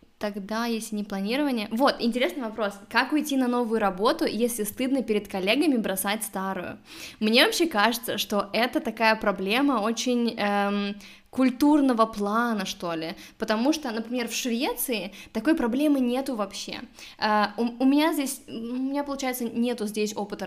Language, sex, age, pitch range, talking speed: Russian, female, 20-39, 200-245 Hz, 150 wpm